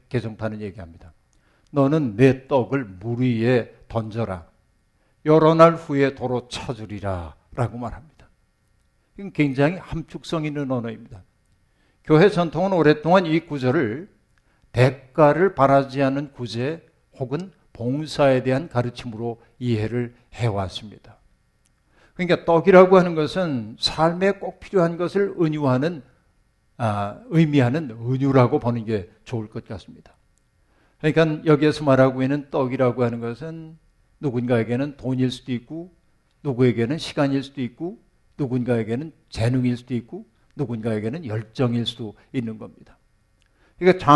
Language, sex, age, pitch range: Korean, male, 60-79, 120-160 Hz